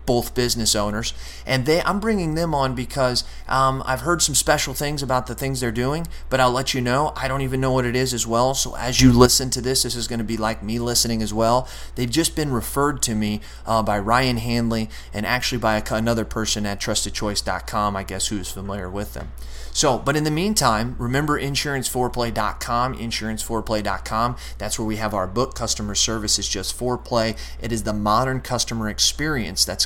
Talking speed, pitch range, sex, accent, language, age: 205 wpm, 105-130 Hz, male, American, English, 30-49